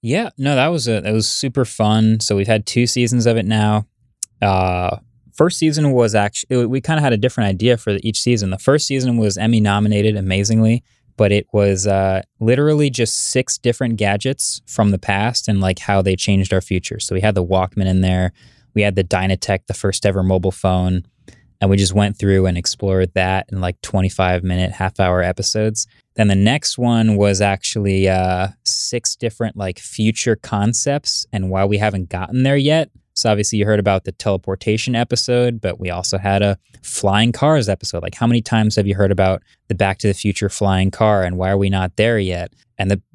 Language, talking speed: English, 205 wpm